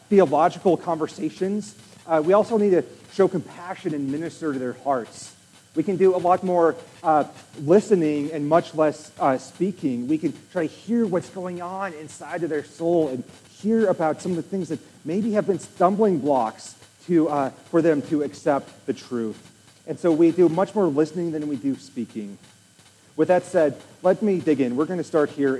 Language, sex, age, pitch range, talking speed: English, male, 30-49, 135-175 Hz, 195 wpm